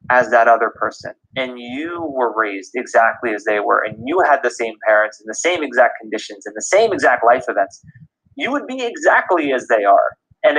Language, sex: English, male